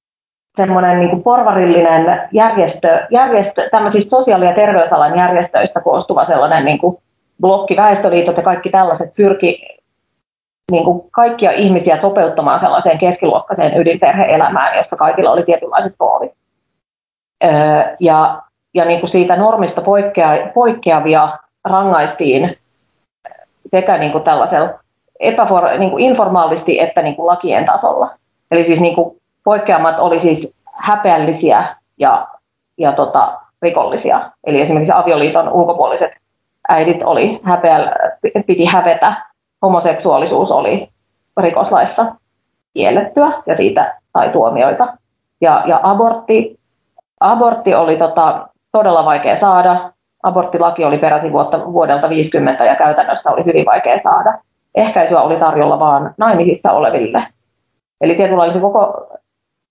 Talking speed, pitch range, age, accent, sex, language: 100 wpm, 170-210 Hz, 30-49, native, female, Finnish